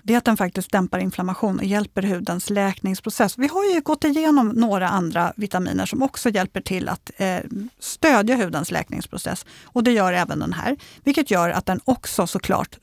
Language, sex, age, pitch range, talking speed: Swedish, female, 50-69, 190-265 Hz, 180 wpm